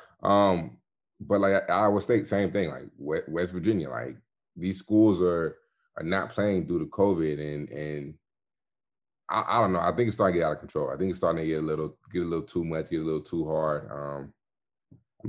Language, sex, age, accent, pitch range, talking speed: English, male, 20-39, American, 75-95 Hz, 220 wpm